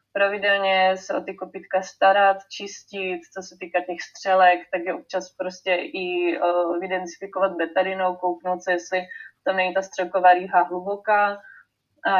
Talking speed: 150 wpm